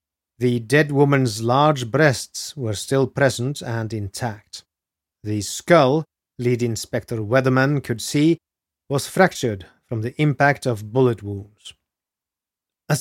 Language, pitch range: English, 110-140 Hz